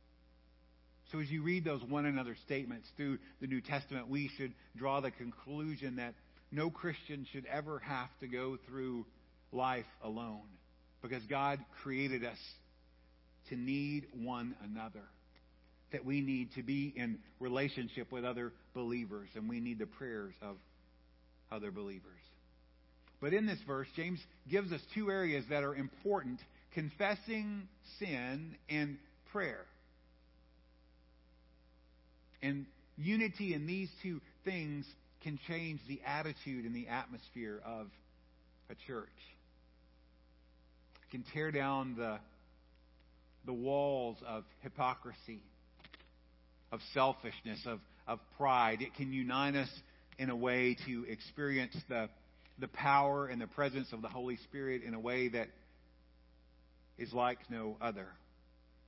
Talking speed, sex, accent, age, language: 130 wpm, male, American, 50-69, English